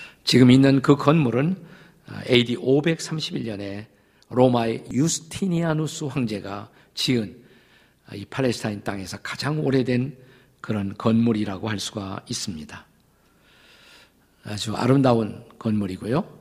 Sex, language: male, Korean